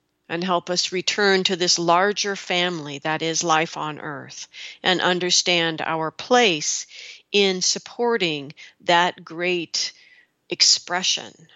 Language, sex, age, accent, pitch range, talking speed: English, female, 50-69, American, 160-205 Hz, 115 wpm